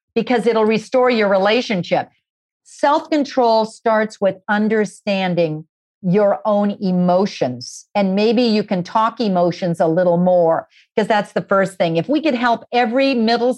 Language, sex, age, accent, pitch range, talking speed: English, female, 50-69, American, 190-255 Hz, 140 wpm